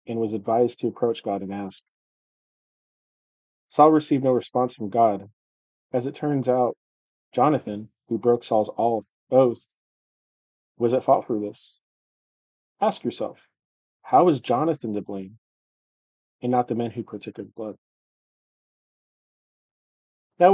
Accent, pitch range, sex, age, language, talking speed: American, 110-130 Hz, male, 30-49, English, 130 wpm